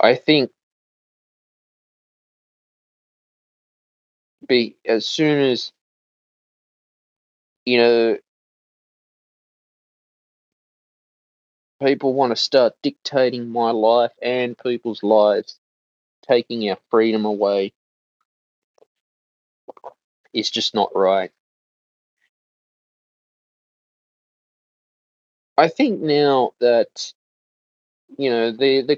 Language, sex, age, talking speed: English, male, 20-39, 70 wpm